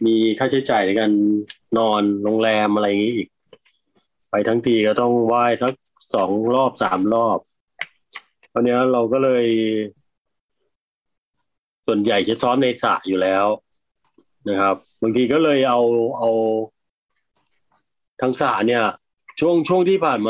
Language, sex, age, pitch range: Thai, male, 20-39, 105-125 Hz